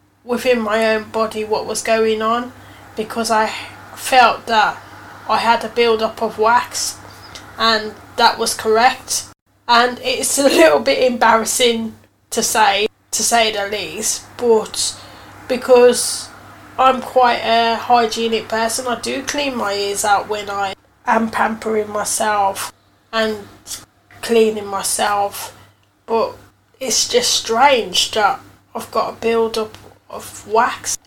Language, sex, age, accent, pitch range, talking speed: English, female, 10-29, British, 205-245 Hz, 125 wpm